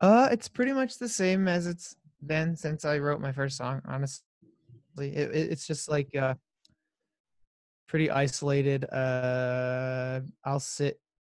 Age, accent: 20-39, American